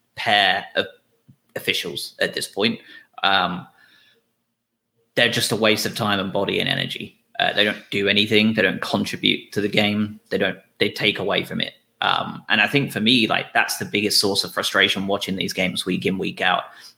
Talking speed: 195 wpm